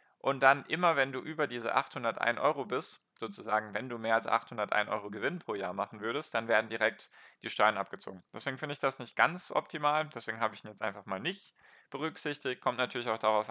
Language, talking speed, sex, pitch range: German, 215 wpm, male, 110-145 Hz